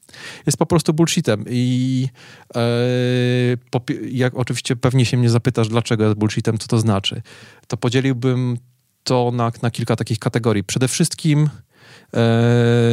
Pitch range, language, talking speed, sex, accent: 110-130 Hz, Polish, 140 wpm, male, native